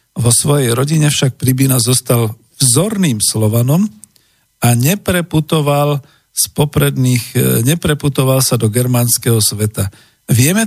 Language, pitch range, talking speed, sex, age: Slovak, 120-150 Hz, 95 wpm, male, 50-69